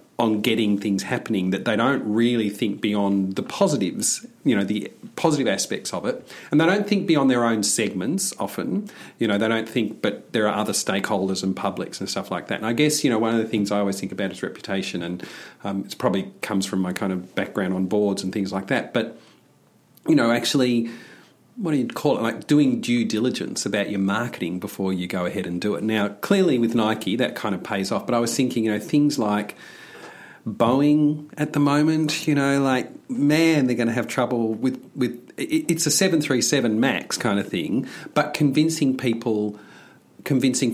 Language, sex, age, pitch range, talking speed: English, male, 40-59, 105-145 Hz, 210 wpm